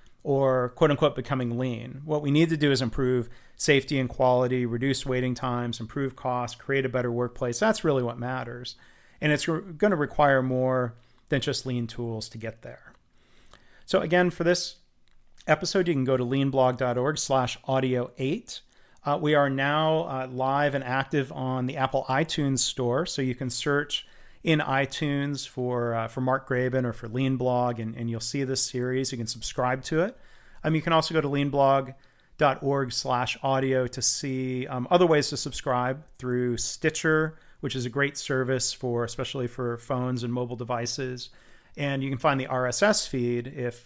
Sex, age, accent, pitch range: male, 40-59, American, 125-145 Hz